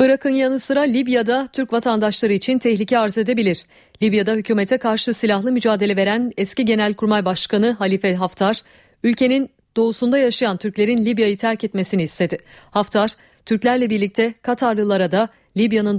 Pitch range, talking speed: 195-245 Hz, 130 wpm